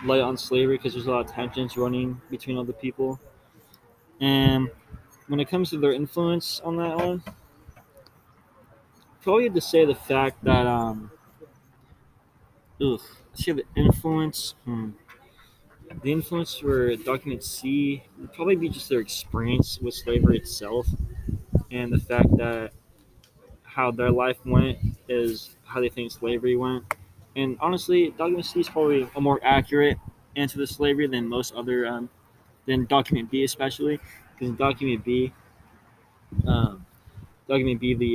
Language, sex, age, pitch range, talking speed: English, male, 20-39, 120-140 Hz, 140 wpm